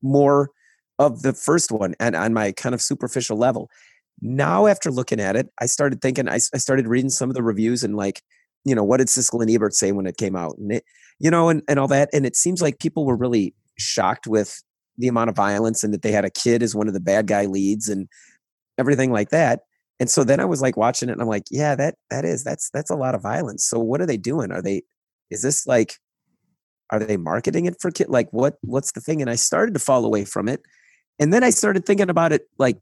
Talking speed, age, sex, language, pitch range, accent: 250 wpm, 30-49, male, English, 110-150 Hz, American